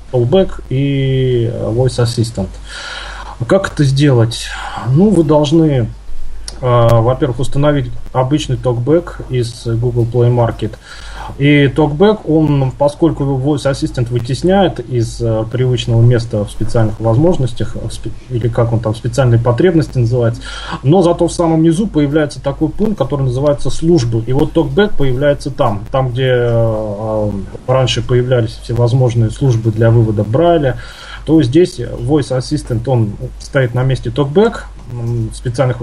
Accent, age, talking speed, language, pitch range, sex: native, 20-39, 125 wpm, Russian, 120-150 Hz, male